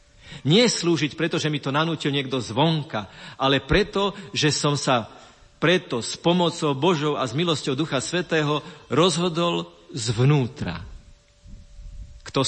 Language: Slovak